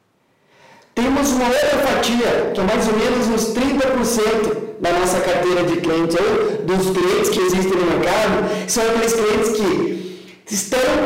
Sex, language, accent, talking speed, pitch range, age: male, Portuguese, Brazilian, 145 wpm, 180-240 Hz, 40-59